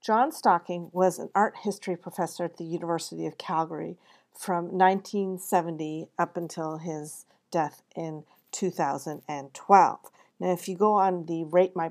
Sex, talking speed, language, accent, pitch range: female, 140 wpm, English, American, 170-205 Hz